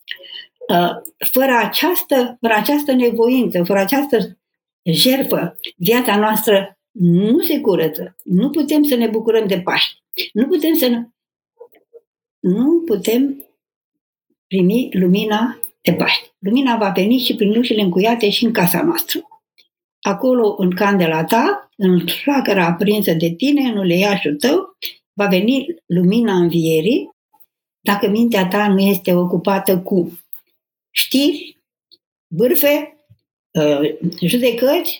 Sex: female